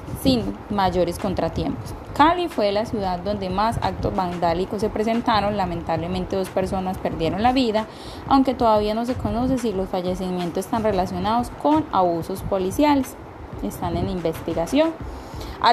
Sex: female